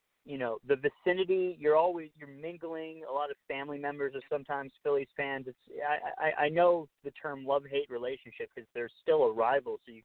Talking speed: 205 wpm